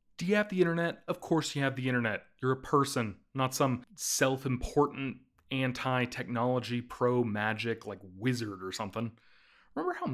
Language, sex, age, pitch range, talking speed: English, male, 30-49, 120-180 Hz, 155 wpm